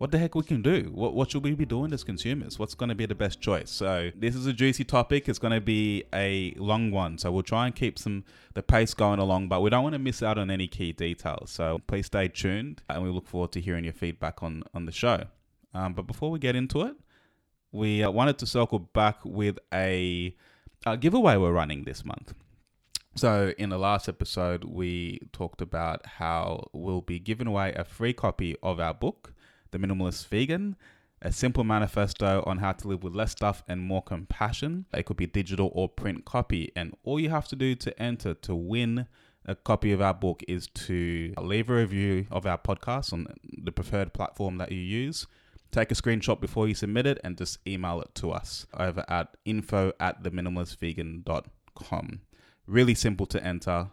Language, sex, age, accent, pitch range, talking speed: English, male, 20-39, Australian, 90-115 Hz, 205 wpm